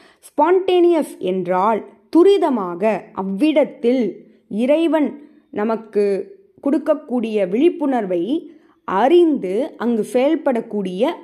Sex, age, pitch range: female, 20-39, 195-295 Hz